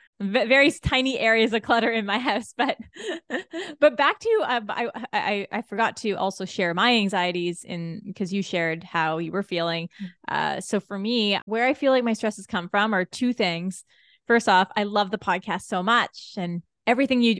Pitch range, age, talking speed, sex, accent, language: 180-235 Hz, 20-39, 200 wpm, female, American, English